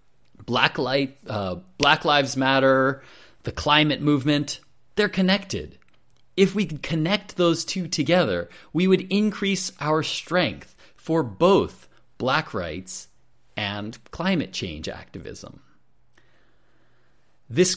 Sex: male